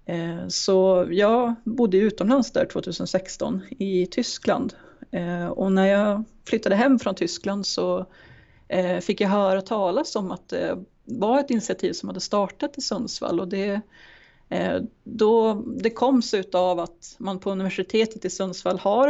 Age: 30-49